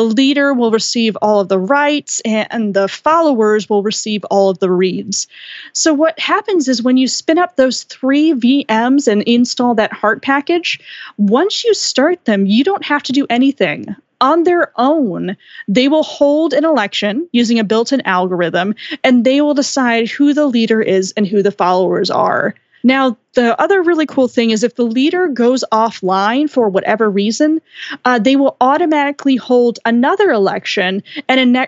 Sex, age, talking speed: female, 20-39, 175 wpm